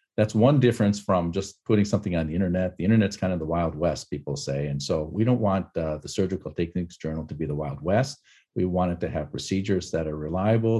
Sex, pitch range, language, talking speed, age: male, 80-110 Hz, English, 240 wpm, 50-69